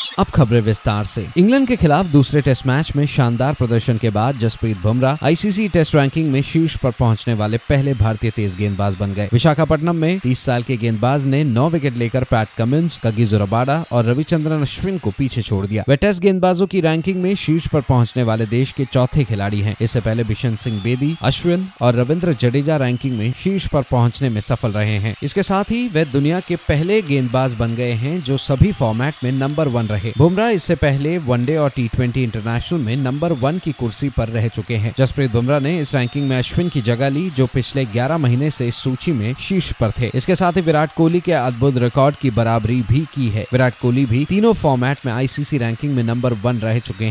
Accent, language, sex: native, Hindi, male